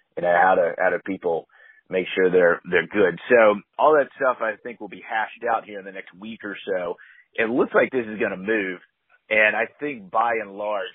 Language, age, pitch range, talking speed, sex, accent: English, 30-49, 95-130 Hz, 230 wpm, male, American